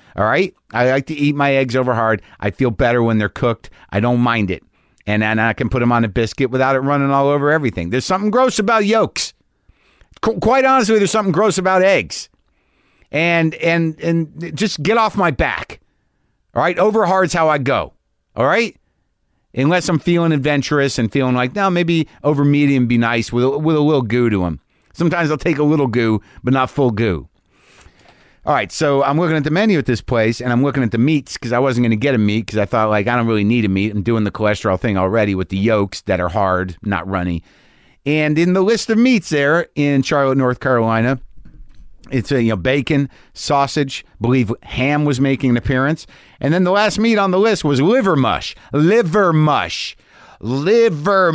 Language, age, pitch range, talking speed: English, 50-69, 115-170 Hz, 210 wpm